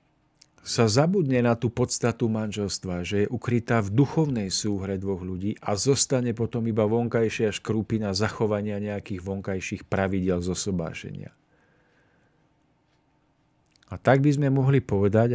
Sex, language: male, Czech